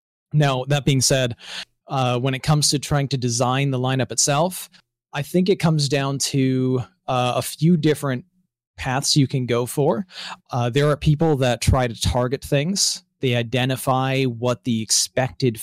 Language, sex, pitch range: English, male, 115-135 Hz